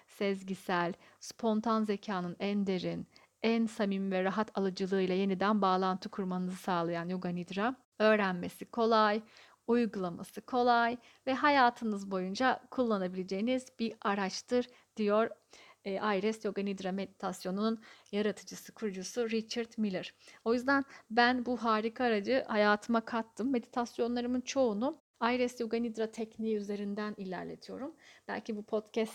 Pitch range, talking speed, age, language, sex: 195-235 Hz, 110 wpm, 50-69, Turkish, female